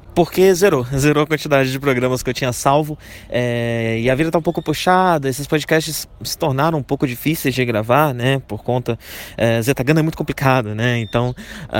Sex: male